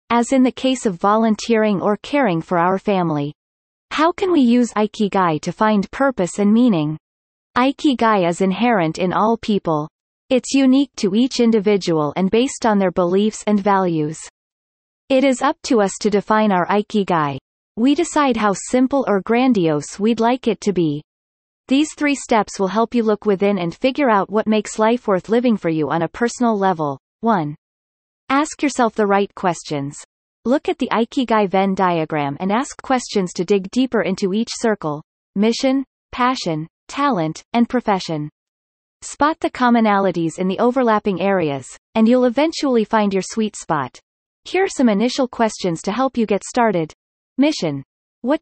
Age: 30-49